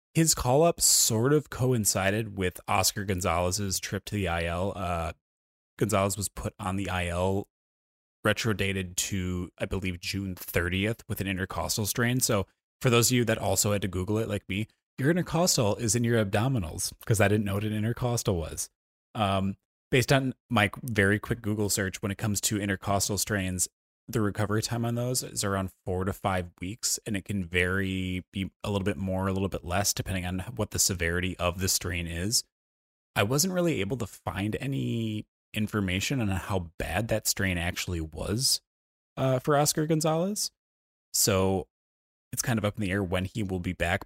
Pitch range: 90-110 Hz